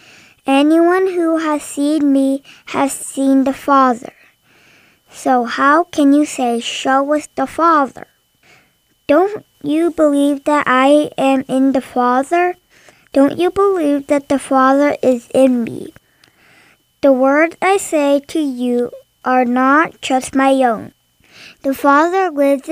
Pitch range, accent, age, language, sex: 260-305 Hz, American, 20-39, Korean, male